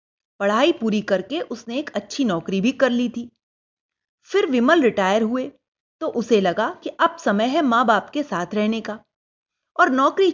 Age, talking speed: 30-49, 175 wpm